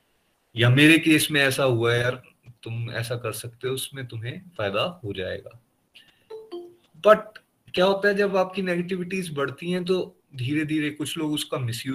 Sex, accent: male, native